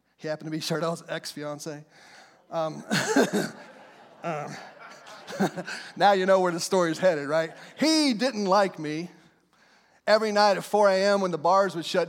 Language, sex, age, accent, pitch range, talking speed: English, male, 30-49, American, 145-195 Hz, 155 wpm